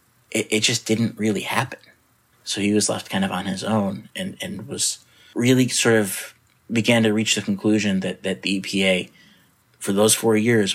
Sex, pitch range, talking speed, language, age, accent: male, 95-125 Hz, 185 wpm, English, 20-39, American